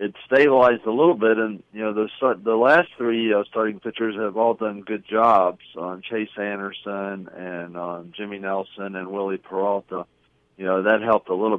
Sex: male